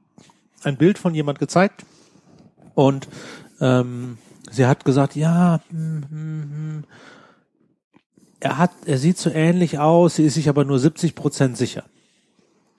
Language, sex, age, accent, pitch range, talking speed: German, male, 40-59, German, 125-155 Hz, 120 wpm